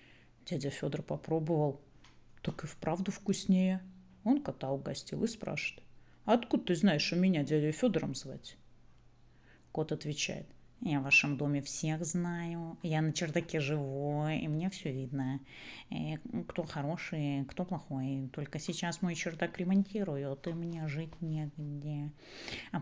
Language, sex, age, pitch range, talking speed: Russian, female, 30-49, 145-190 Hz, 135 wpm